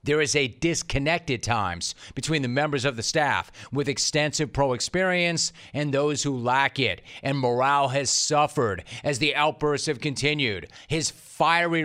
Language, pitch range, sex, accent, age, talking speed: English, 125-150 Hz, male, American, 40-59, 155 wpm